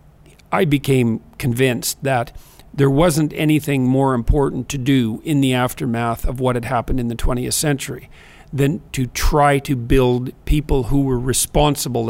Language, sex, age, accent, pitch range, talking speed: English, male, 50-69, American, 120-140 Hz, 155 wpm